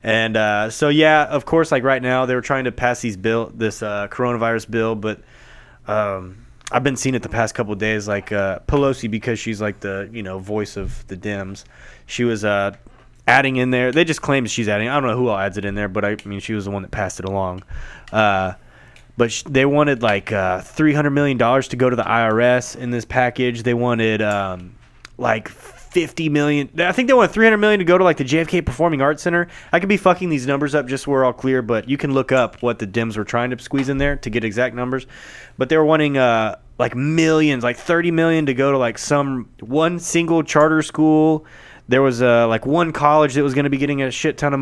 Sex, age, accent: male, 20-39, American